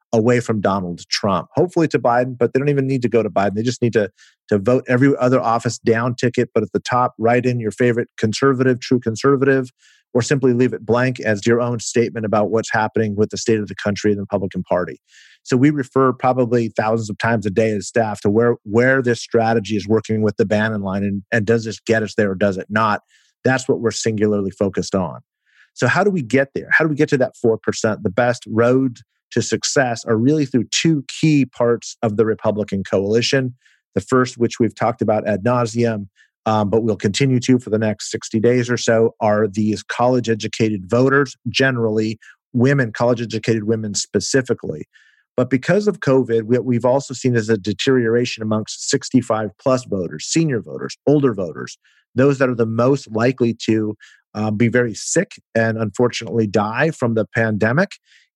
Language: English